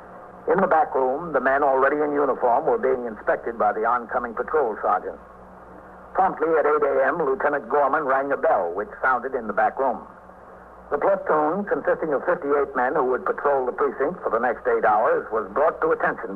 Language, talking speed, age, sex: English, 190 wpm, 60-79, male